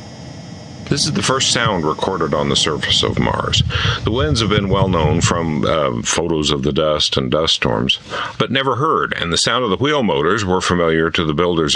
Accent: American